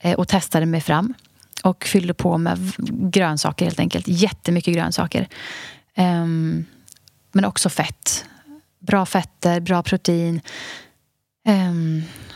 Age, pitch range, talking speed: 30-49, 165-205 Hz, 105 wpm